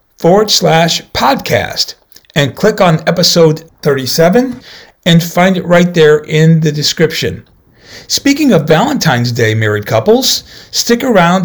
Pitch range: 125-200 Hz